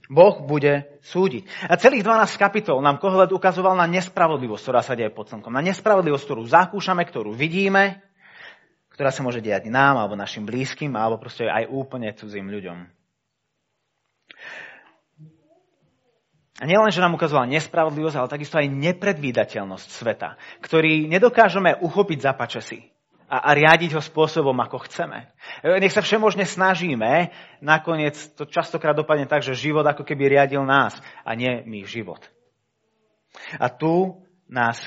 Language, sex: Slovak, male